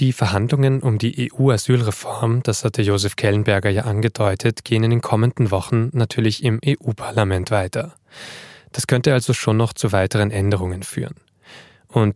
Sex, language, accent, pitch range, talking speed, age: male, German, German, 105-125 Hz, 150 wpm, 10-29